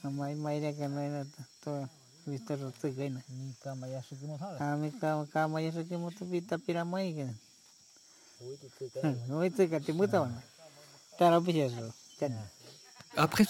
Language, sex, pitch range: French, male, 130-175 Hz